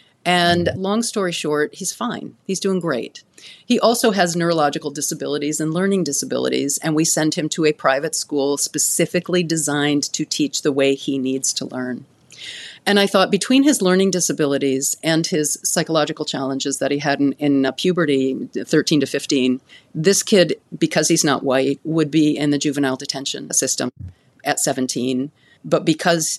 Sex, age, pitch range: female, 40-59, 140-175 Hz